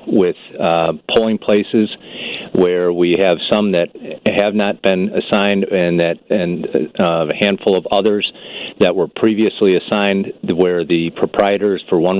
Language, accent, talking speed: English, American, 150 wpm